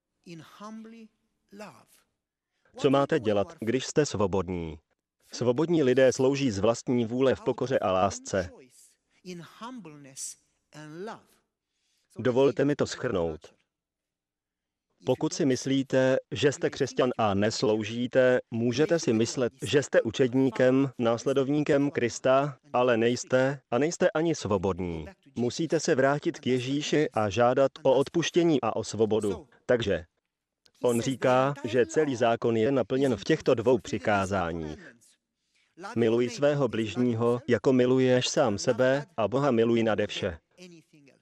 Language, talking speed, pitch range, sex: Slovak, 115 wpm, 115-140 Hz, male